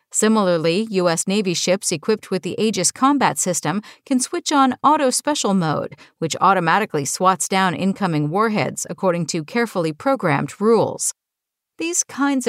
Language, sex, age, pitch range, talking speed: English, female, 50-69, 180-250 Hz, 135 wpm